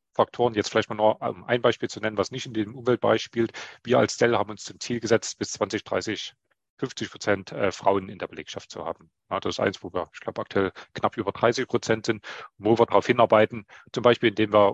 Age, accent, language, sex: 40-59, German, German, male